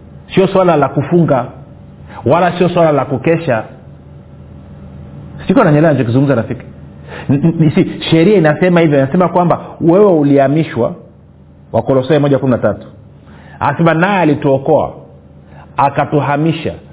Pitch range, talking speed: 130-165 Hz, 95 wpm